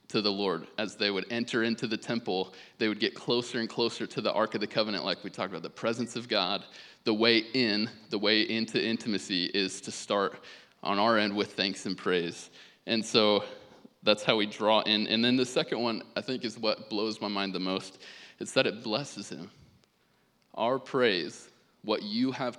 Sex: male